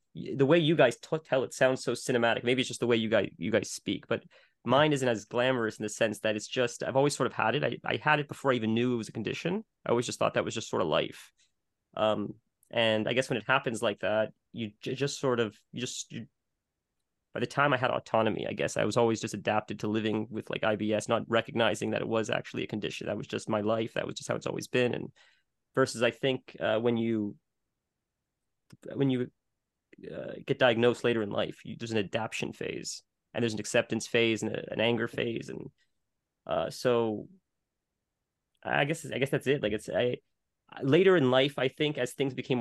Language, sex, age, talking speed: English, male, 30-49, 225 wpm